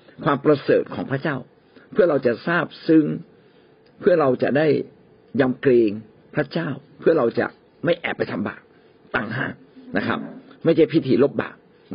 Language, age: Thai, 60-79